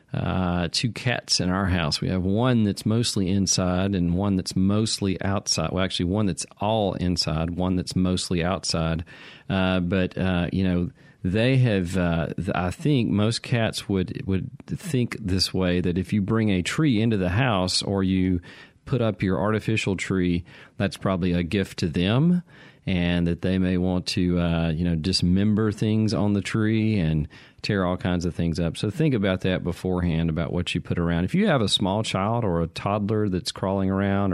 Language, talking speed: English, 190 wpm